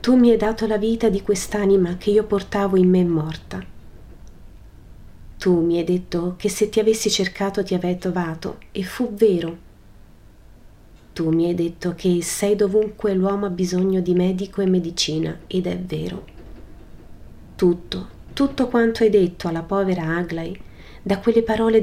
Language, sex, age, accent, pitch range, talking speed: Italian, female, 30-49, native, 160-205 Hz, 155 wpm